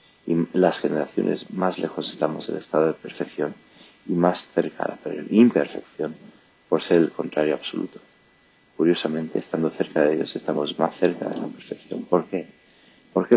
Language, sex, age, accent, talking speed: English, male, 30-49, Spanish, 155 wpm